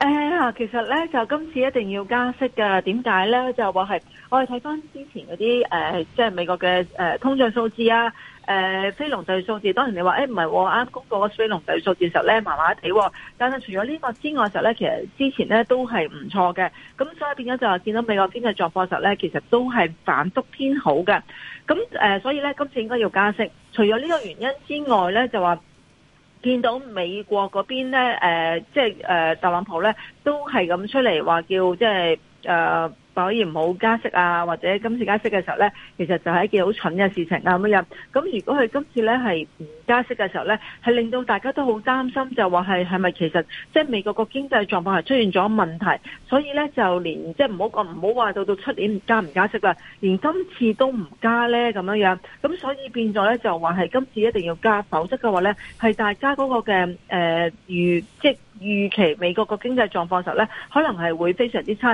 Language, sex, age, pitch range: Chinese, female, 40-59, 185-245 Hz